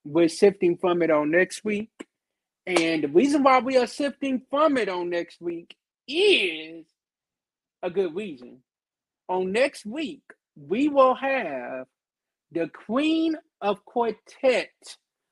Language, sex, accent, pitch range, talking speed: English, male, American, 160-200 Hz, 130 wpm